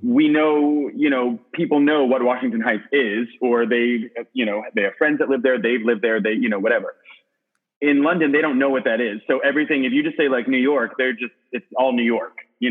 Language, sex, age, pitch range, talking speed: English, male, 30-49, 115-155 Hz, 240 wpm